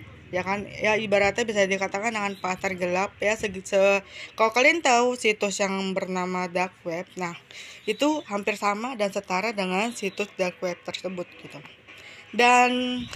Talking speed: 145 wpm